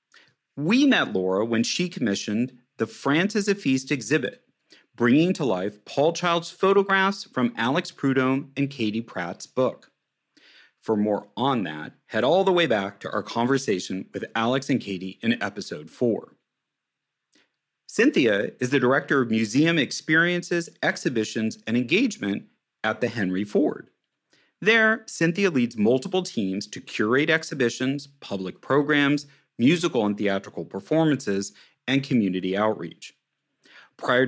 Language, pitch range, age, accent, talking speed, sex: English, 110-160 Hz, 40-59, American, 135 wpm, male